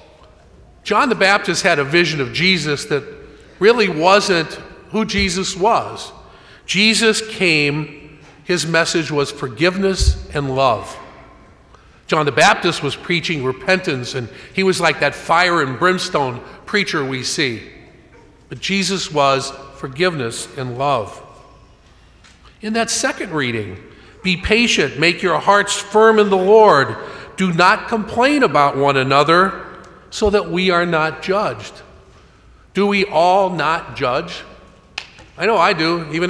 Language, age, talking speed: English, 50-69, 130 wpm